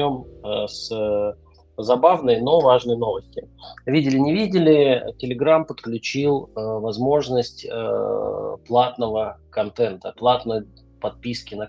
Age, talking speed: 20-39, 90 wpm